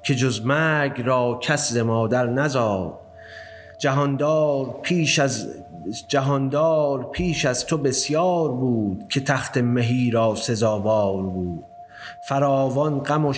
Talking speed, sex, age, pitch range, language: 110 wpm, male, 30-49, 115-150 Hz, Persian